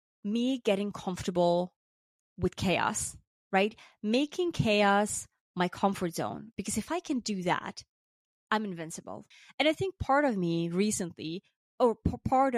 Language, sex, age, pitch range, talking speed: English, female, 20-39, 185-245 Hz, 135 wpm